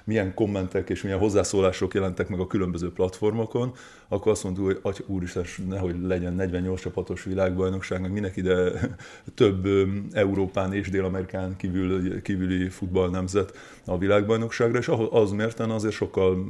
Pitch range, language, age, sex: 95-105 Hz, Hungarian, 30-49, male